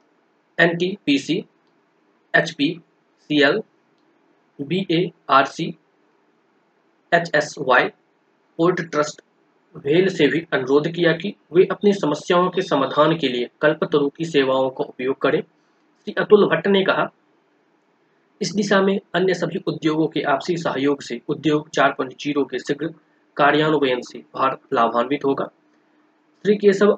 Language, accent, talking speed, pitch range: Hindi, native, 120 wpm, 145-210 Hz